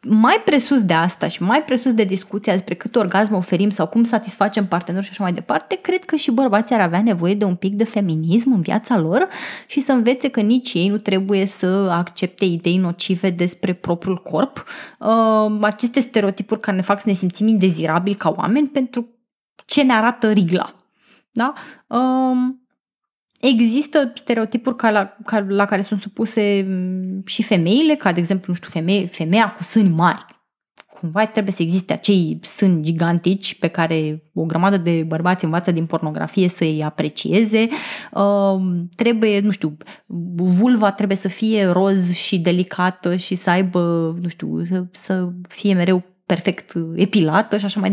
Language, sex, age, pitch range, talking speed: Romanian, female, 20-39, 180-225 Hz, 165 wpm